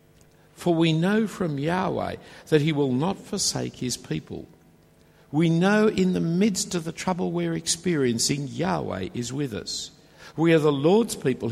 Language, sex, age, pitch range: English, male, 60-79, 135-185 Hz